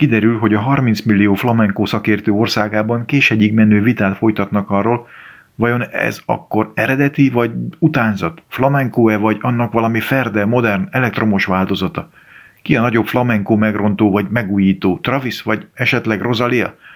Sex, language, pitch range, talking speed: male, Hungarian, 100-120 Hz, 140 wpm